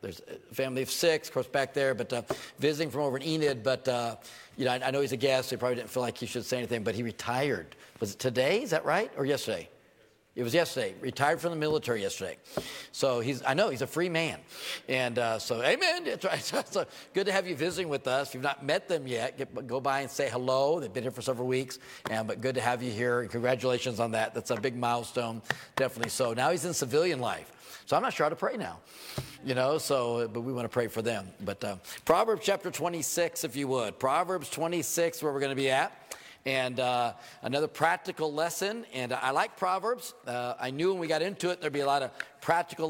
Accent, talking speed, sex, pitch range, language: American, 245 wpm, male, 125-165 Hz, English